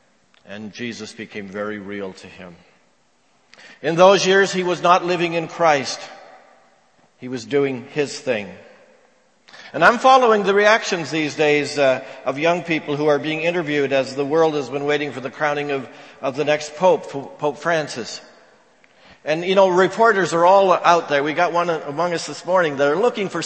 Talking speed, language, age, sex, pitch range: 180 wpm, English, 50-69, male, 130-170 Hz